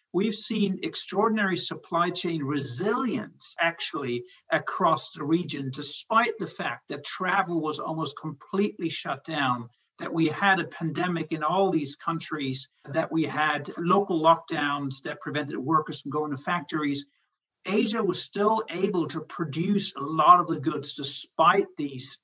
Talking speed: 145 wpm